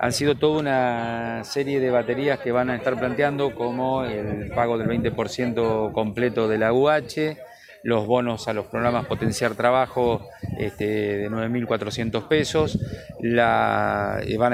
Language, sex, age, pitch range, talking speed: Spanish, male, 30-49, 110-130 Hz, 130 wpm